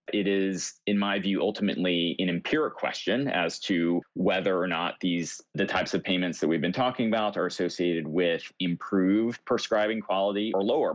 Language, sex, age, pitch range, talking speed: English, male, 30-49, 90-105 Hz, 175 wpm